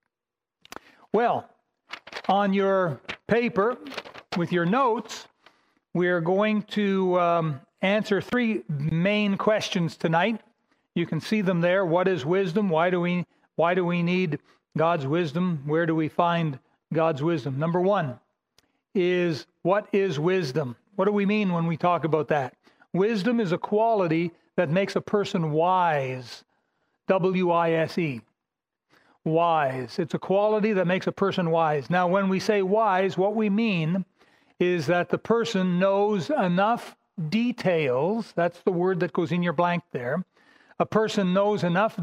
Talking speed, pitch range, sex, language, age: 145 wpm, 170-205 Hz, male, English, 40-59